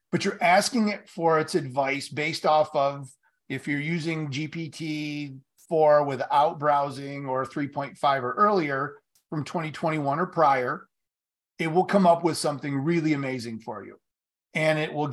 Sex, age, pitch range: male, 30-49, 140-170 Hz